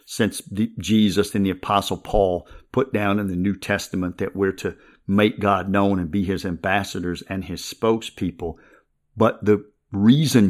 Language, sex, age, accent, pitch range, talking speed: English, male, 50-69, American, 95-120 Hz, 160 wpm